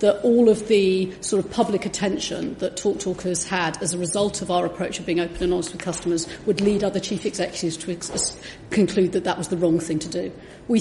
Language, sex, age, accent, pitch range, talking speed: English, female, 40-59, British, 175-210 Hz, 235 wpm